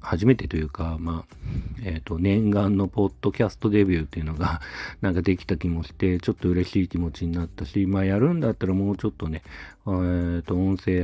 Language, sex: Japanese, male